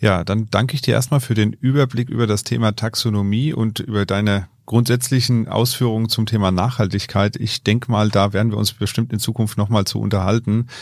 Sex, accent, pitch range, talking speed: male, German, 100-120 Hz, 190 wpm